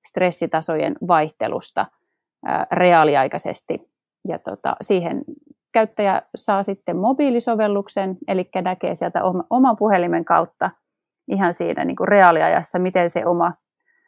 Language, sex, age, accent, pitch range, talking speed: Finnish, female, 30-49, native, 175-215 Hz, 100 wpm